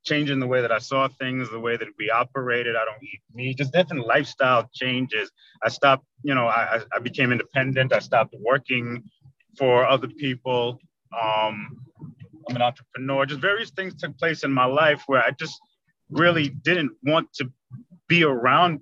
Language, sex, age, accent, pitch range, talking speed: English, male, 30-49, American, 130-160 Hz, 175 wpm